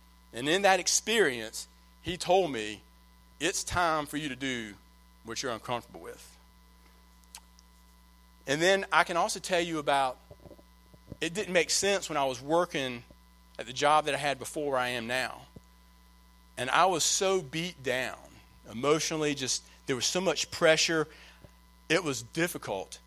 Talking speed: 155 wpm